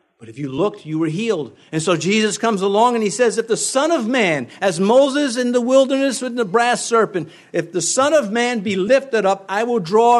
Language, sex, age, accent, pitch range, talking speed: English, male, 50-69, American, 150-215 Hz, 235 wpm